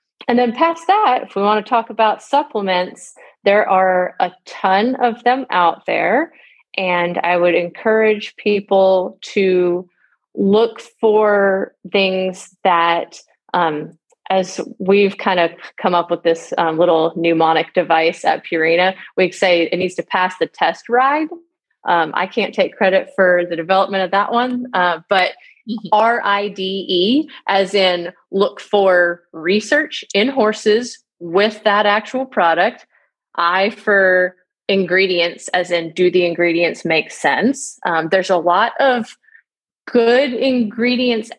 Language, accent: English, American